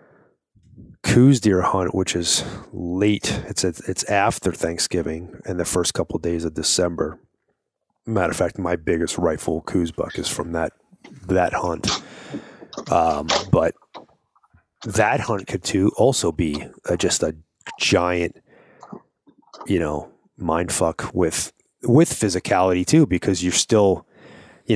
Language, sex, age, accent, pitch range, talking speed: English, male, 30-49, American, 80-95 Hz, 135 wpm